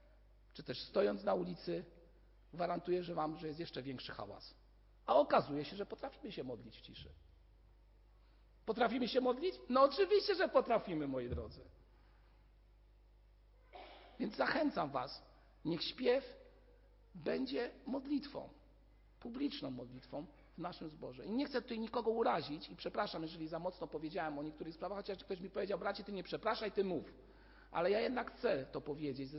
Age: 50-69